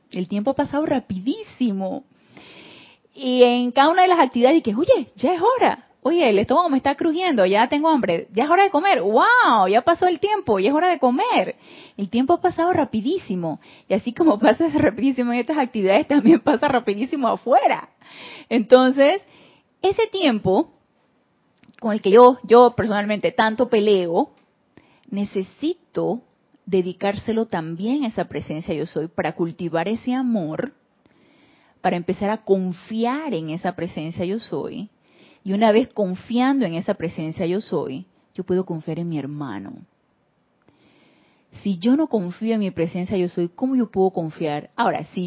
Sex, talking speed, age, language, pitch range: female, 160 wpm, 30-49, Spanish, 190-290 Hz